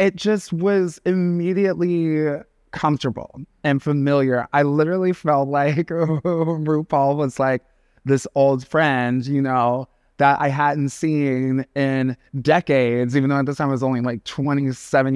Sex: male